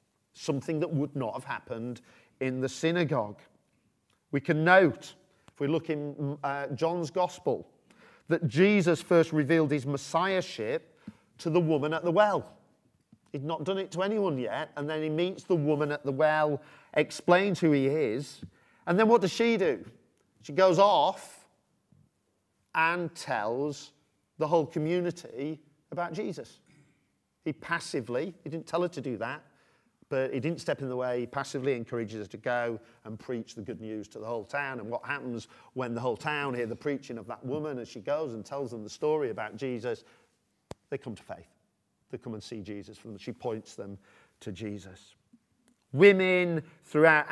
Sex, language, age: male, English, 40-59